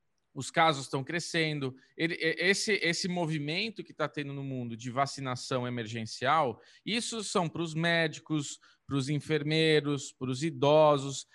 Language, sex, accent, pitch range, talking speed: Portuguese, male, Brazilian, 145-215 Hz, 135 wpm